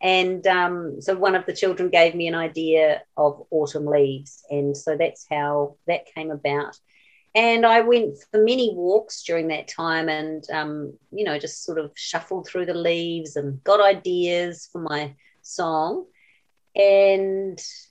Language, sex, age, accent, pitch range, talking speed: English, female, 40-59, Australian, 155-210 Hz, 160 wpm